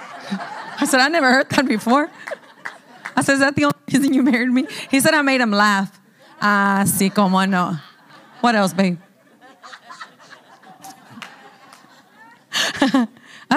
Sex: female